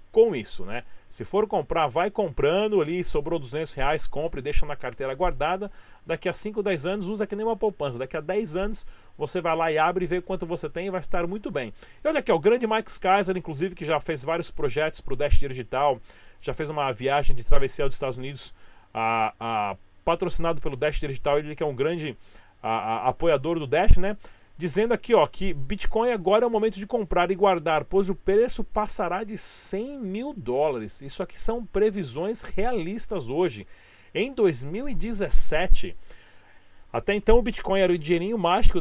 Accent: Brazilian